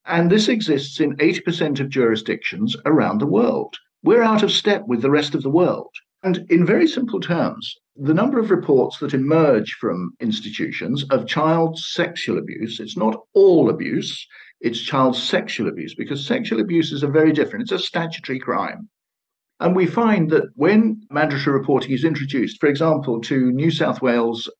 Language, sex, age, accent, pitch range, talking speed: English, male, 50-69, British, 135-205 Hz, 175 wpm